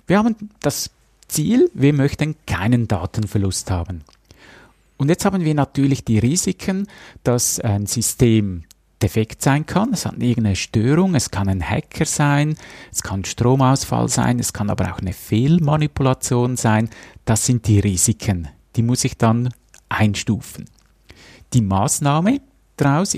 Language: German